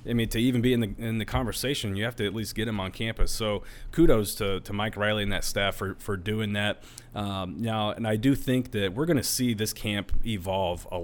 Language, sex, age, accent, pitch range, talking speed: English, male, 30-49, American, 95-110 Hz, 255 wpm